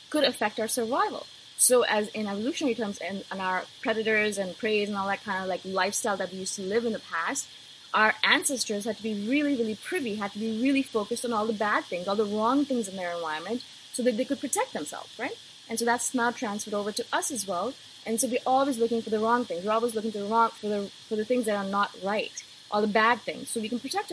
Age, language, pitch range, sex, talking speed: 20-39, English, 210-270 Hz, female, 255 wpm